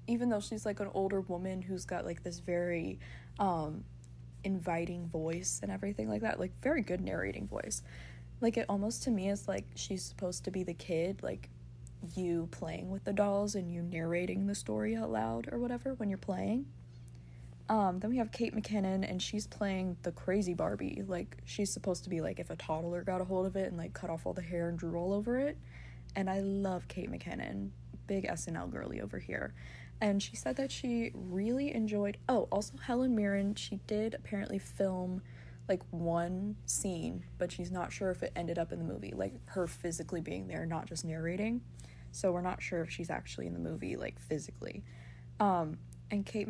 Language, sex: English, female